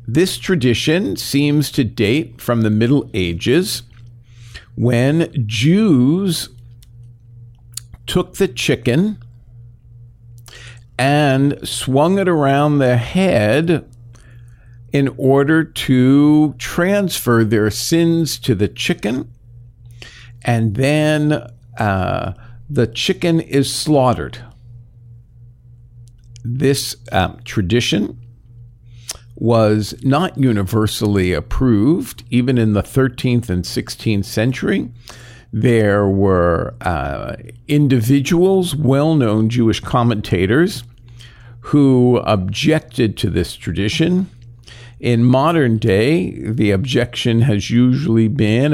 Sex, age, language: male, 50-69, English